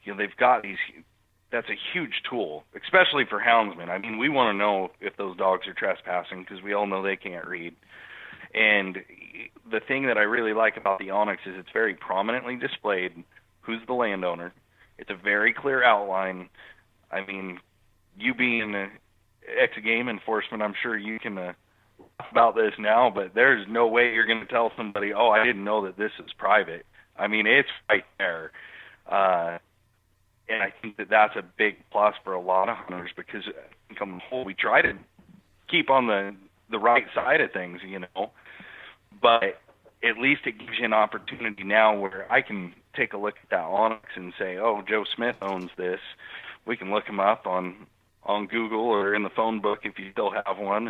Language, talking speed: English, 190 wpm